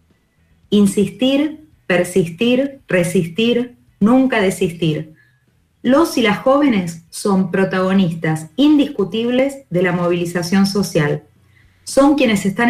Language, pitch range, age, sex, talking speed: Spanish, 170-220 Hz, 30-49, female, 90 wpm